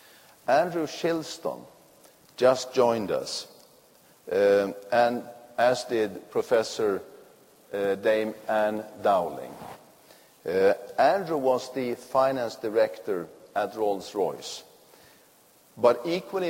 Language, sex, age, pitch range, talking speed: English, male, 50-69, 115-165 Hz, 85 wpm